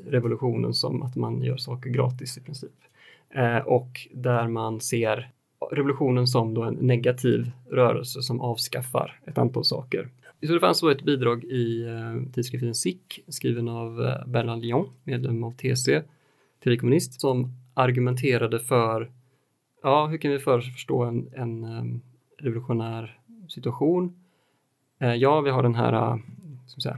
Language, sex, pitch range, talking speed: Swedish, male, 120-140 Hz, 145 wpm